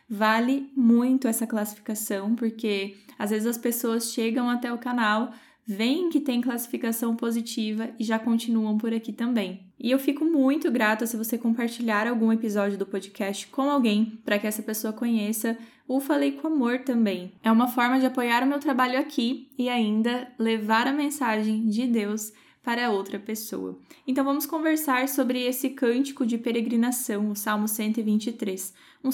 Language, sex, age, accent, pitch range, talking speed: Portuguese, female, 10-29, Brazilian, 215-255 Hz, 165 wpm